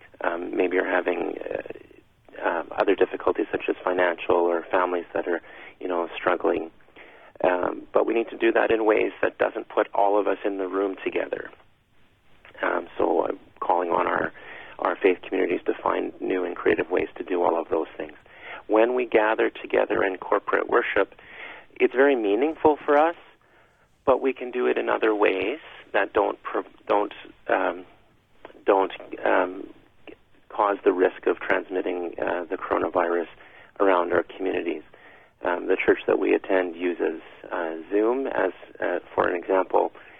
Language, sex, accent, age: English, male, American, 40-59